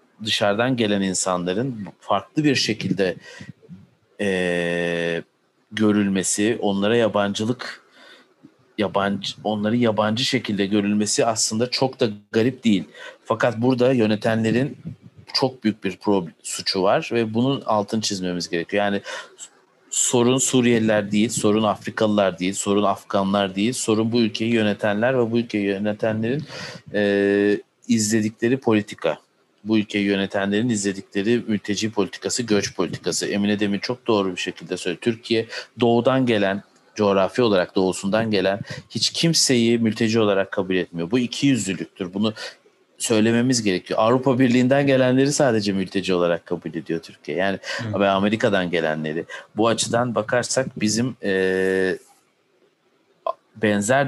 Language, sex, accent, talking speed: Turkish, male, native, 120 wpm